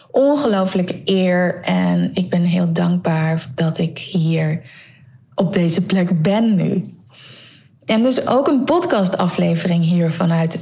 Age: 20-39